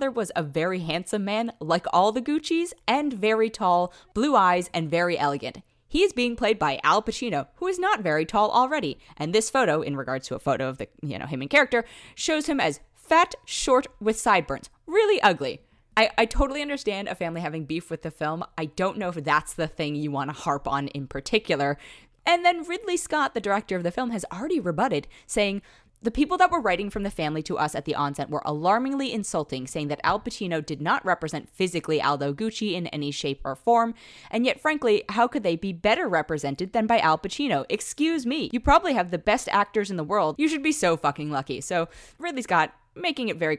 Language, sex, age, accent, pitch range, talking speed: English, female, 20-39, American, 155-250 Hz, 220 wpm